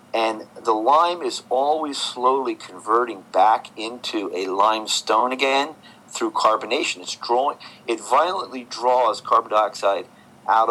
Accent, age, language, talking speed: American, 50-69, English, 125 wpm